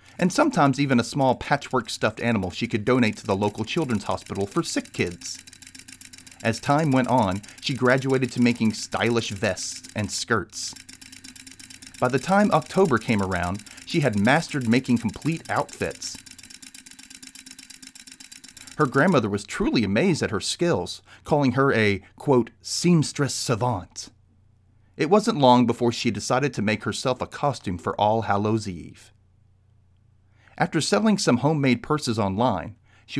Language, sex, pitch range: English, male, 100-145 Hz